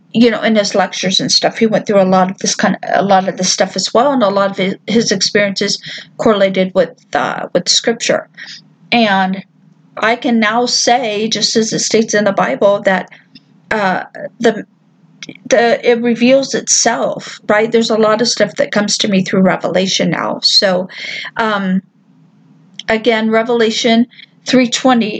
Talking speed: 170 wpm